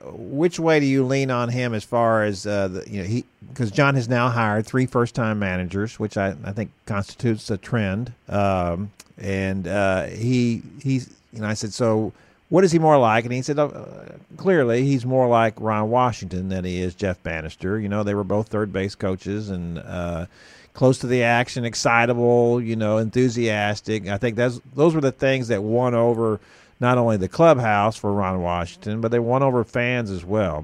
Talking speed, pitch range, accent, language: 205 wpm, 100-125 Hz, American, English